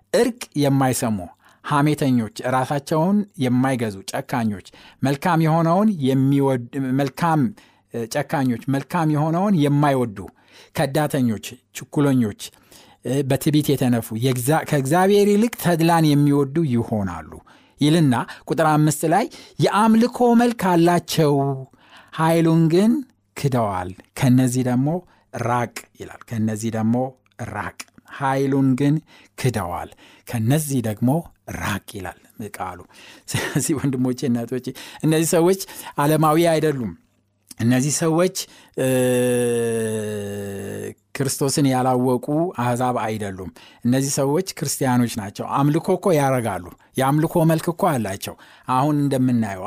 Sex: male